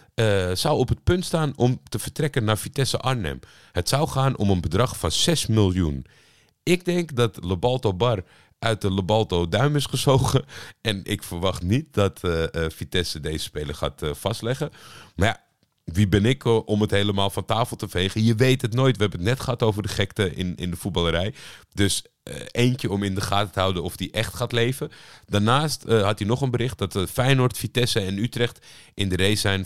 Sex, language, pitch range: male, Dutch, 85-115 Hz